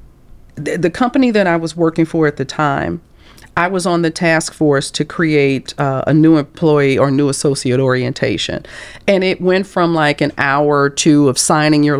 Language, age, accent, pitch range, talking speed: English, 40-59, American, 140-185 Hz, 190 wpm